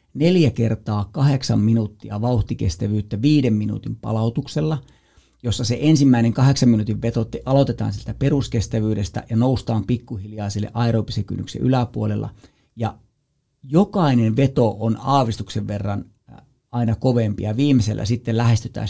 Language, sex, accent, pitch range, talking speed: Finnish, male, native, 110-130 Hz, 110 wpm